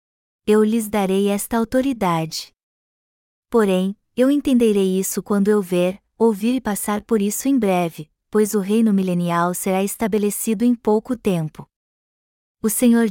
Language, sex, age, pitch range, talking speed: Portuguese, female, 20-39, 195-230 Hz, 135 wpm